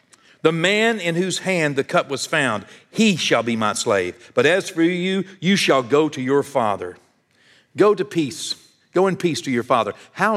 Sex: male